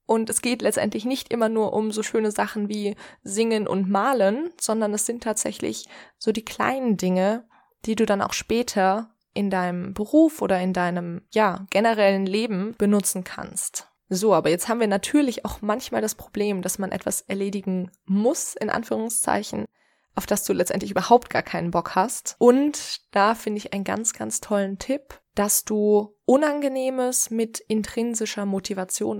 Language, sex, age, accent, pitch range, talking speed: German, female, 20-39, German, 195-230 Hz, 165 wpm